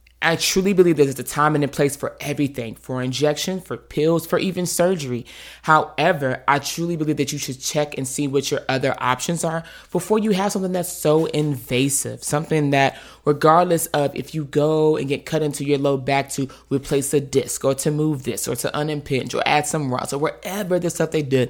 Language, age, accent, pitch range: English, 20-39, American, 135-175 Hz